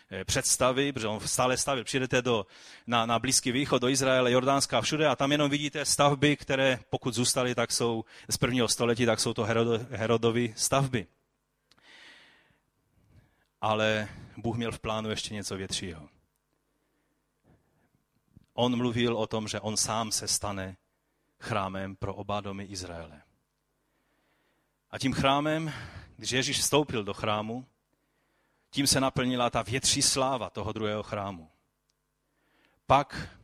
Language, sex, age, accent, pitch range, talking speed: Czech, male, 30-49, native, 105-125 Hz, 130 wpm